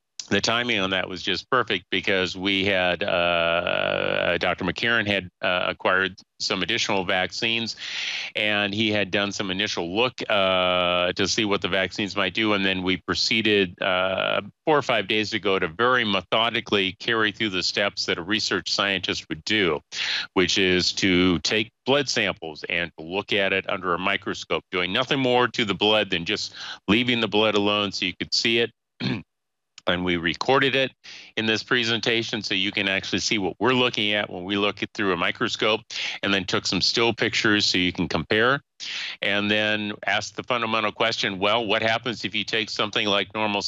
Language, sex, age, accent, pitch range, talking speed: English, male, 40-59, American, 95-115 Hz, 185 wpm